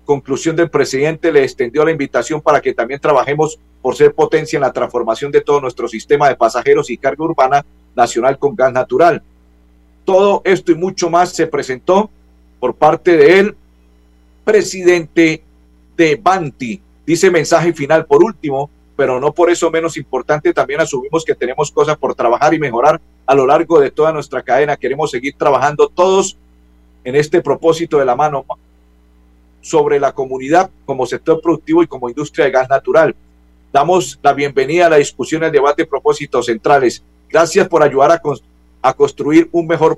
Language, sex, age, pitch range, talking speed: Spanish, male, 50-69, 130-195 Hz, 165 wpm